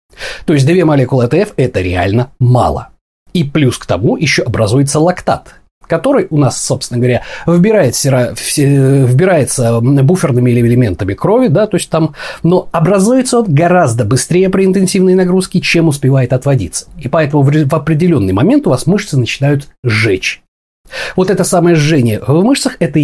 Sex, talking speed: male, 135 wpm